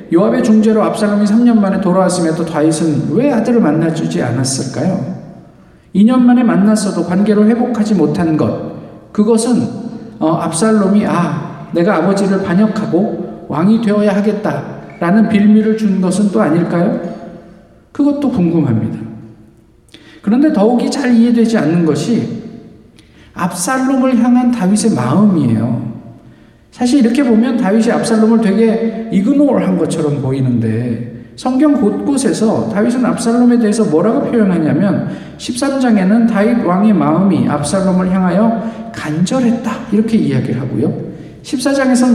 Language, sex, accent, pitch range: Korean, male, native, 170-240 Hz